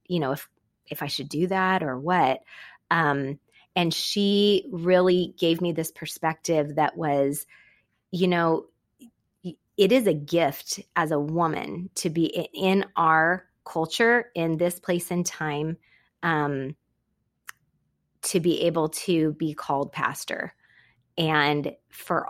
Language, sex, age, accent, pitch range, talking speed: English, female, 20-39, American, 150-180 Hz, 130 wpm